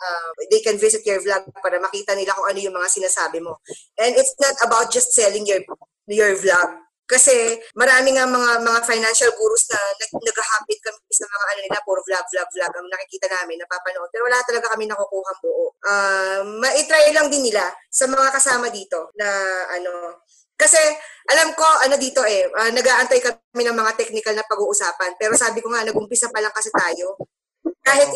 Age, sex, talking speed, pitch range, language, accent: 20-39, female, 185 wpm, 200-260 Hz, Filipino, native